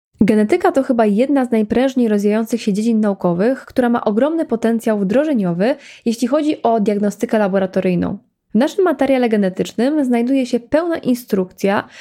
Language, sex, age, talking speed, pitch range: Polish, female, 20-39, 140 wpm, 205-265 Hz